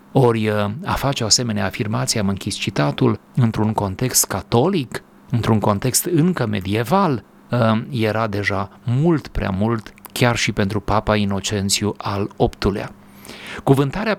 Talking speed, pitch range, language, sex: 125 wpm, 105-130 Hz, Romanian, male